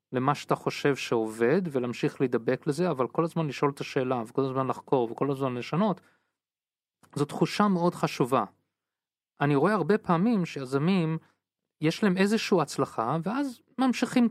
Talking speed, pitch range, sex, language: 145 wpm, 140-190 Hz, male, Hebrew